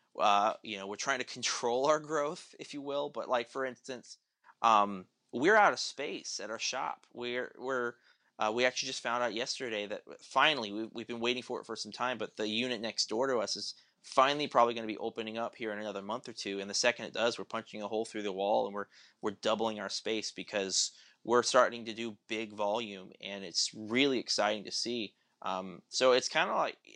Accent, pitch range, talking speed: American, 105-125 Hz, 230 wpm